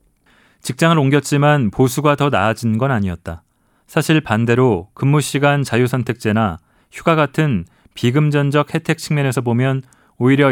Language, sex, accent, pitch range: Korean, male, native, 110-145 Hz